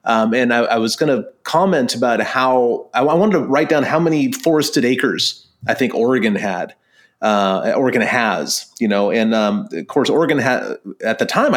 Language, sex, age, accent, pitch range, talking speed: English, male, 30-49, American, 110-150 Hz, 195 wpm